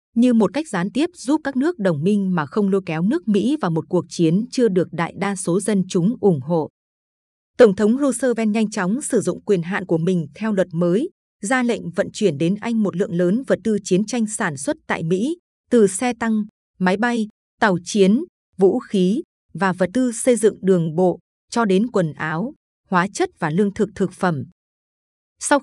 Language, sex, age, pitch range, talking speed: Vietnamese, female, 20-39, 180-230 Hz, 205 wpm